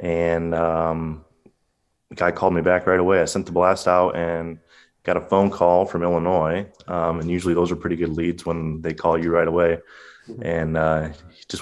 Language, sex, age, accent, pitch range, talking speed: English, male, 20-39, American, 80-90 Hz, 200 wpm